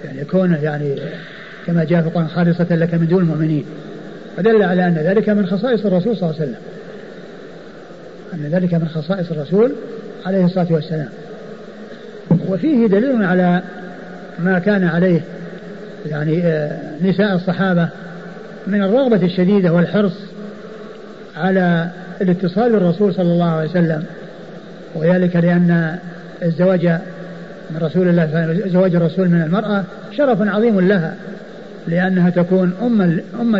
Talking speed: 110 wpm